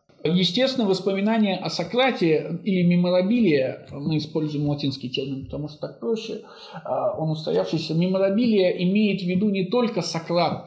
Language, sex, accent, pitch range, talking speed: Russian, male, native, 160-195 Hz, 130 wpm